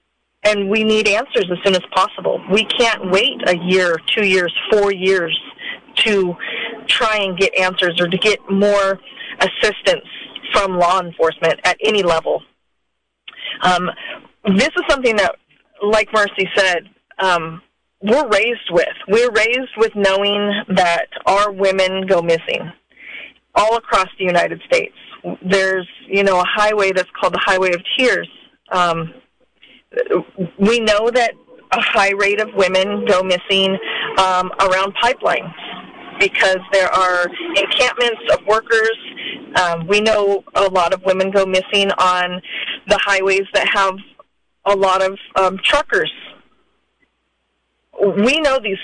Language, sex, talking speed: English, female, 140 wpm